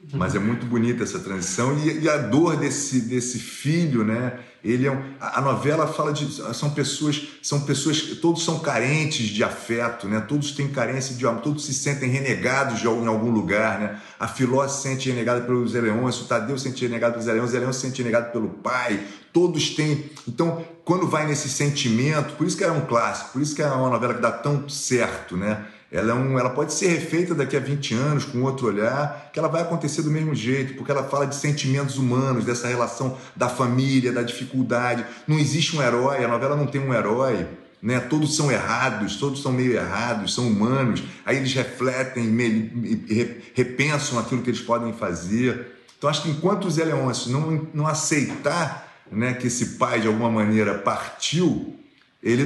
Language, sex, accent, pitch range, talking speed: Portuguese, male, Brazilian, 120-145 Hz, 195 wpm